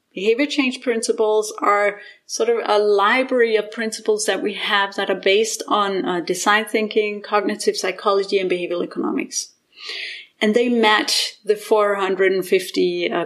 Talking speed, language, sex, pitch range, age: 135 wpm, German, female, 205-275 Hz, 30-49